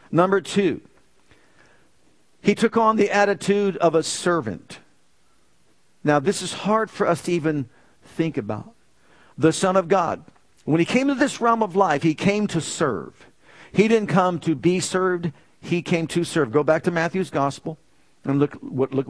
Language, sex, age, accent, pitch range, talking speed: English, male, 50-69, American, 145-195 Hz, 175 wpm